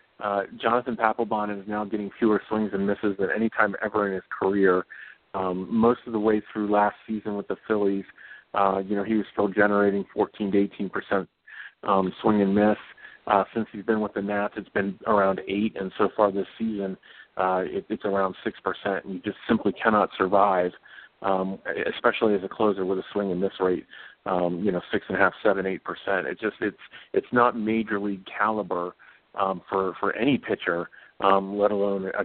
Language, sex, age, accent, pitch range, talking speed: English, male, 40-59, American, 95-110 Hz, 195 wpm